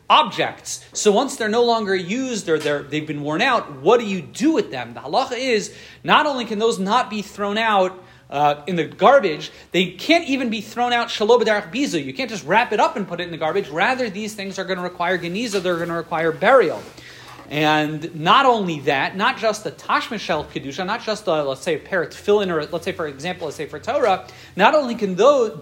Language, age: English, 40-59